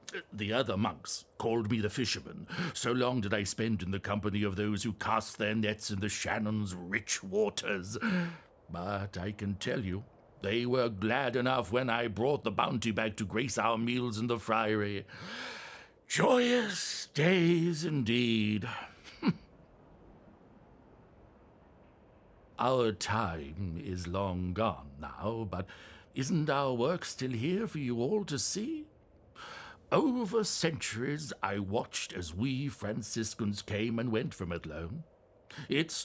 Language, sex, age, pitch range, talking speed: English, male, 60-79, 105-150 Hz, 135 wpm